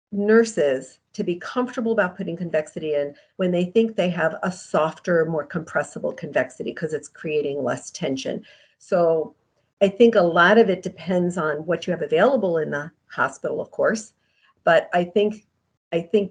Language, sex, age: English, female, 50-69